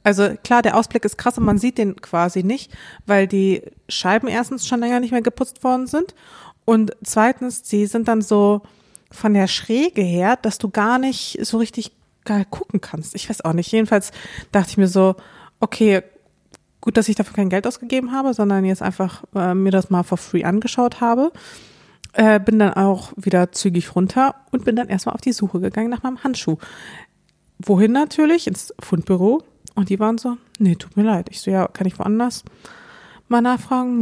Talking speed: 190 wpm